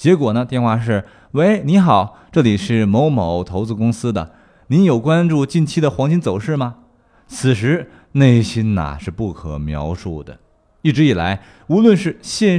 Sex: male